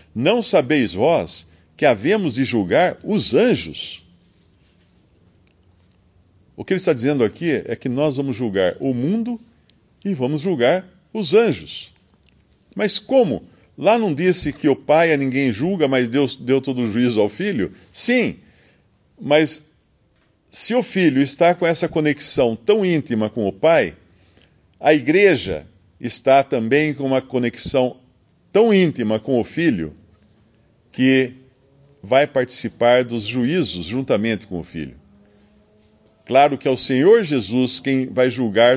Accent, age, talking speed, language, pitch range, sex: Brazilian, 50-69, 140 wpm, Portuguese, 105-150 Hz, male